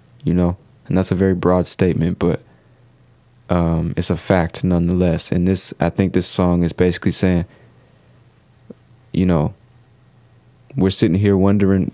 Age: 20-39